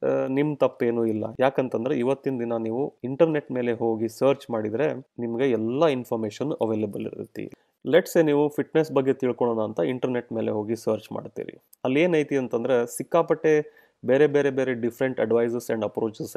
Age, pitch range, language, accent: 30-49, 115-140 Hz, Kannada, native